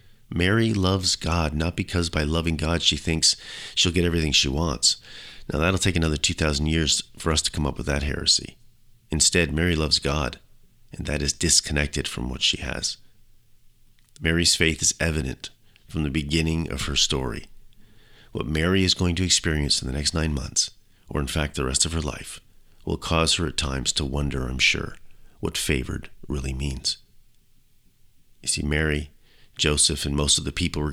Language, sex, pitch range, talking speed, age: English, male, 75-95 Hz, 180 wpm, 40-59